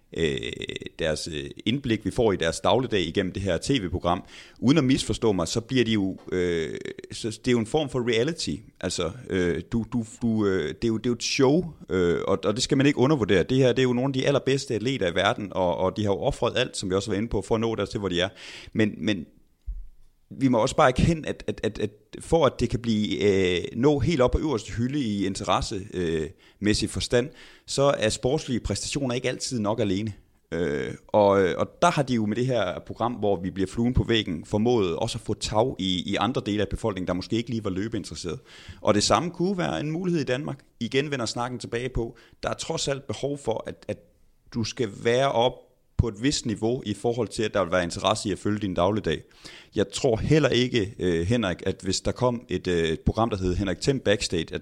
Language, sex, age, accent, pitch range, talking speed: Danish, male, 30-49, native, 95-125 Hz, 235 wpm